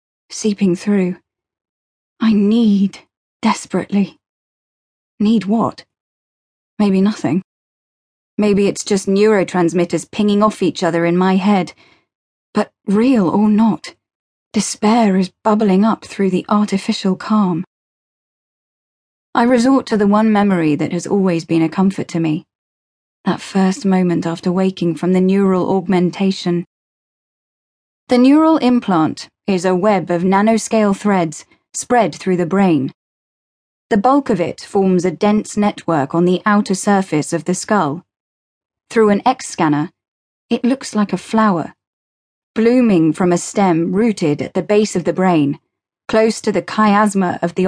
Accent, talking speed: British, 135 wpm